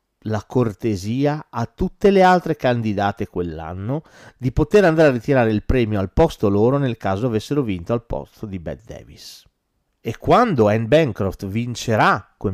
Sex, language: male, Italian